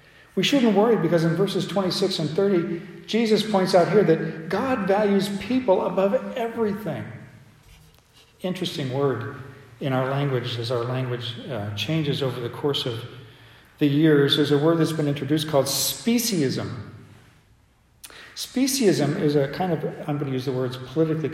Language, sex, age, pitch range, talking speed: English, male, 50-69, 130-195 Hz, 155 wpm